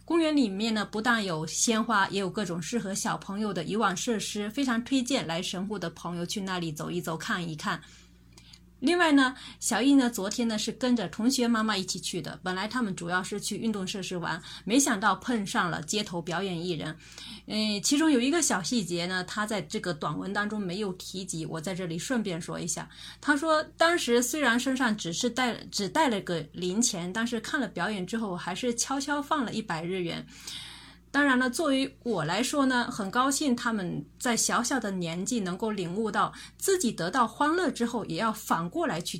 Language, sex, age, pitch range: Chinese, female, 20-39, 180-245 Hz